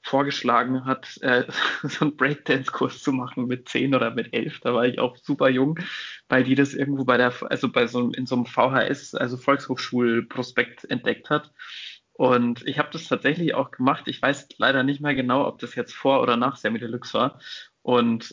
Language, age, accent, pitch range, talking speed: German, 20-39, German, 120-140 Hz, 195 wpm